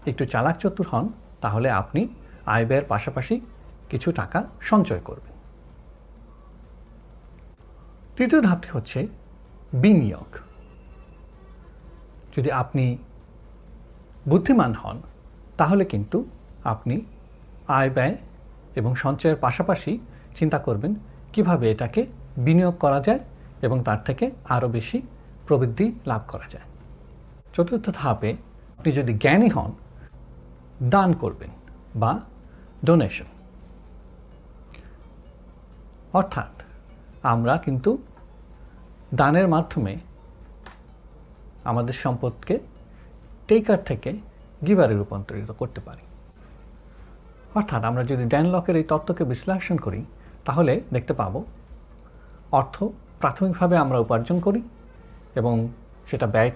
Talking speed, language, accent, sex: 95 wpm, Bengali, native, male